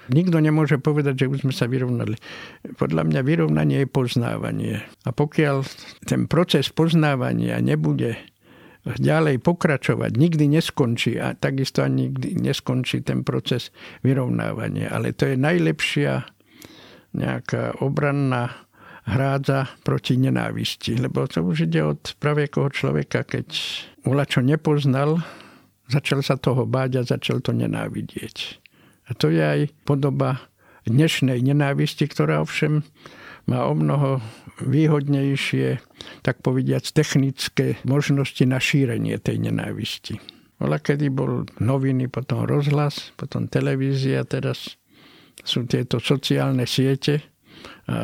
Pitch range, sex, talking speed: 120-145 Hz, male, 115 wpm